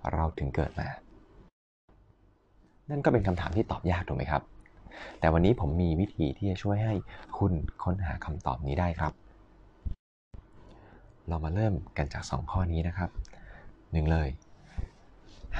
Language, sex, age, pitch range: Thai, male, 20-39, 80-100 Hz